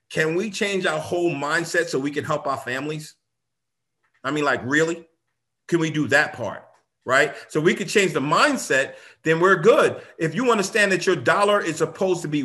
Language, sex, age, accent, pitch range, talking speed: English, male, 40-59, American, 105-160 Hz, 200 wpm